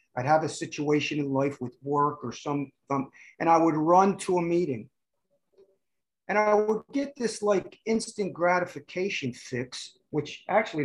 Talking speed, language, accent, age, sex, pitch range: 160 wpm, English, American, 50-69, male, 140-185 Hz